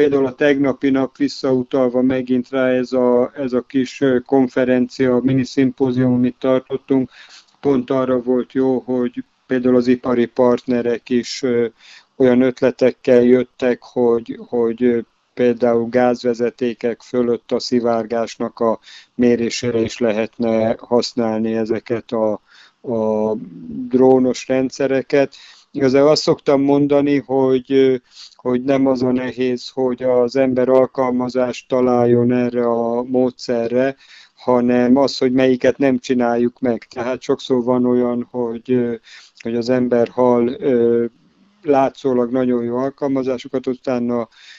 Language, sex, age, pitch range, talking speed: Hungarian, male, 50-69, 120-130 Hz, 115 wpm